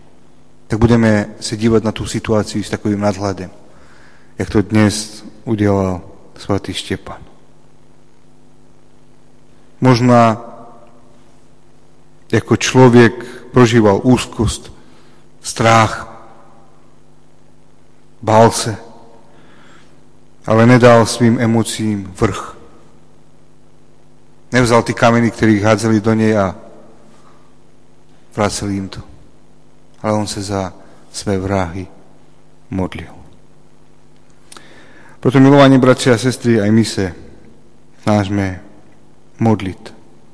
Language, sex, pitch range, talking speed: Slovak, male, 85-115 Hz, 85 wpm